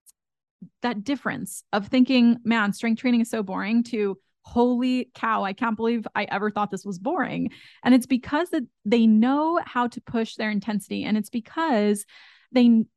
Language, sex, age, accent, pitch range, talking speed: English, female, 20-39, American, 215-250 Hz, 165 wpm